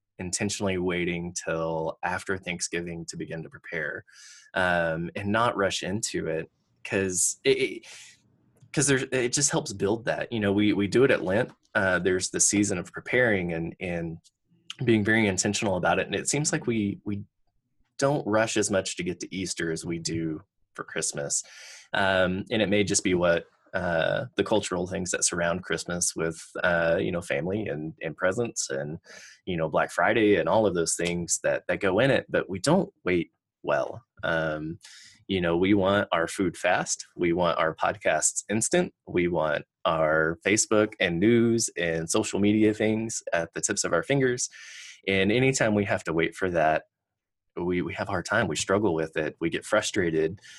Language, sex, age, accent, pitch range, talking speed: English, male, 20-39, American, 85-110 Hz, 185 wpm